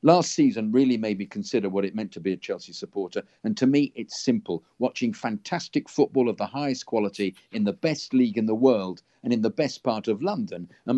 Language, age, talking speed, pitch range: English, 50-69, 225 wpm, 100-135 Hz